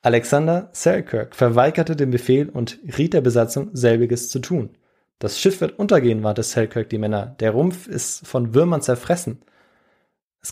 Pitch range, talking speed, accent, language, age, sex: 115-145 Hz, 155 wpm, German, German, 20-39, male